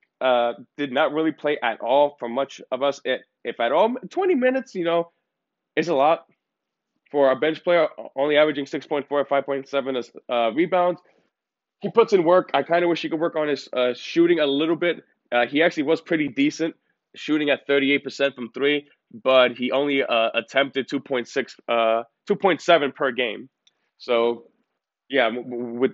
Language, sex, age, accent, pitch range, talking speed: English, male, 20-39, American, 125-155 Hz, 170 wpm